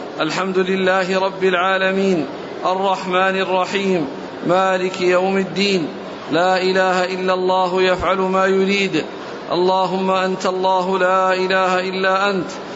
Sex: male